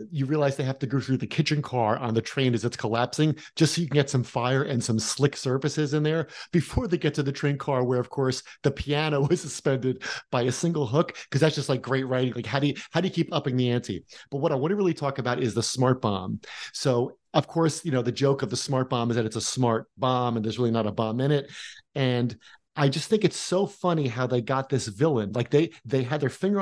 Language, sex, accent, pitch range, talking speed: English, male, American, 125-155 Hz, 270 wpm